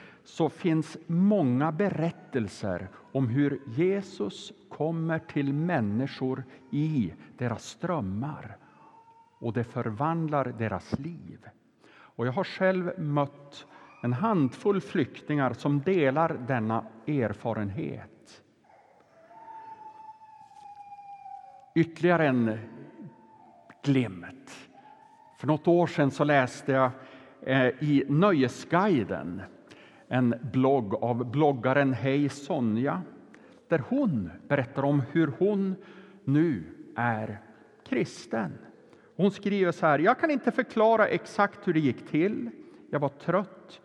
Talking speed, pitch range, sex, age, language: 100 wpm, 135-190 Hz, male, 60-79, Swedish